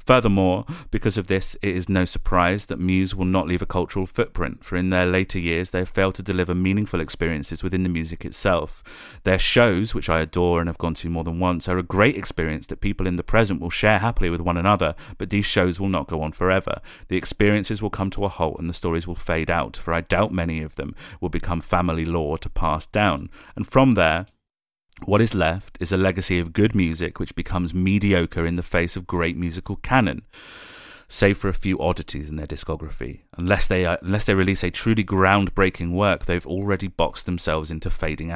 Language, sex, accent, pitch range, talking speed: English, male, British, 85-95 Hz, 215 wpm